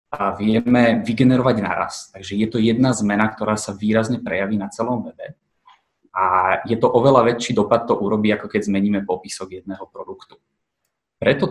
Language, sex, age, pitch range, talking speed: Slovak, male, 20-39, 105-125 Hz, 160 wpm